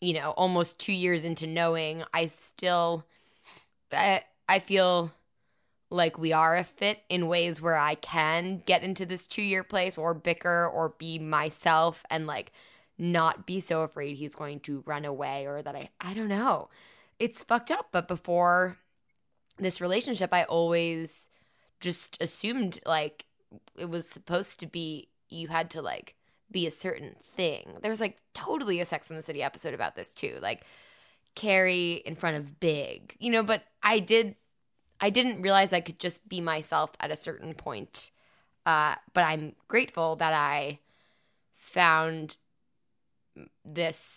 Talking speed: 160 wpm